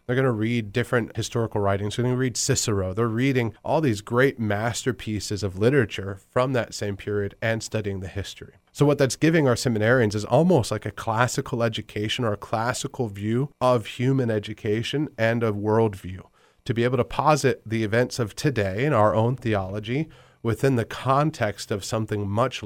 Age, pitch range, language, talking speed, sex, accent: 30-49, 105-130 Hz, English, 185 wpm, male, American